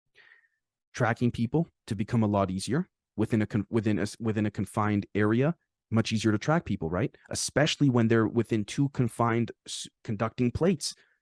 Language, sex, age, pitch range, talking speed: English, male, 30-49, 110-140 Hz, 160 wpm